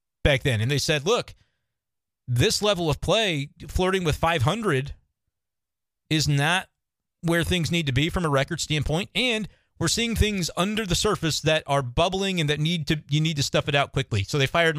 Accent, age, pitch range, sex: American, 40-59, 125-160 Hz, male